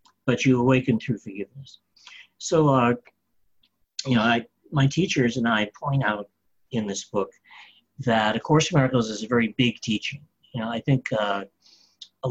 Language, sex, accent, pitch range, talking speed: English, male, American, 110-140 Hz, 165 wpm